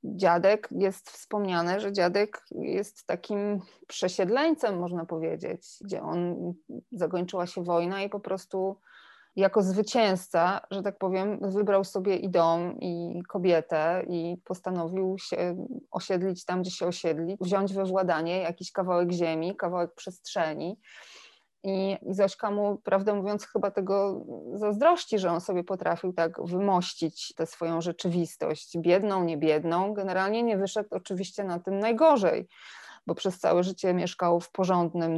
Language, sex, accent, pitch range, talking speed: Polish, female, native, 170-205 Hz, 135 wpm